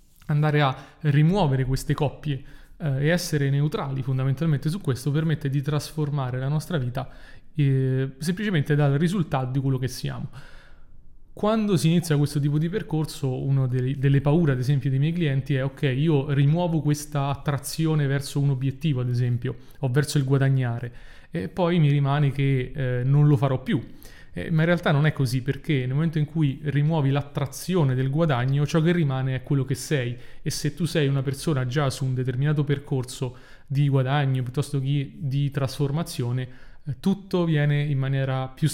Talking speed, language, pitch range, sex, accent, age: 175 wpm, Italian, 135-150 Hz, male, native, 30-49